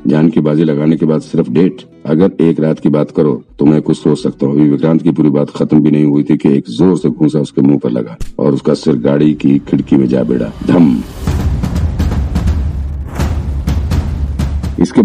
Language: Hindi